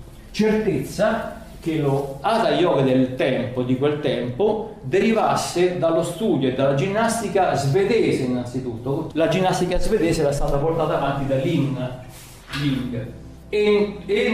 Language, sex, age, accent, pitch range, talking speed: Italian, male, 40-59, native, 130-170 Hz, 125 wpm